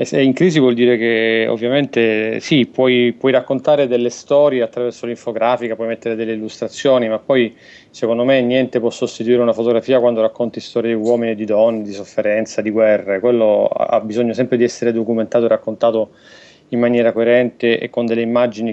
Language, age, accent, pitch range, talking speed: Italian, 30-49, native, 115-130 Hz, 180 wpm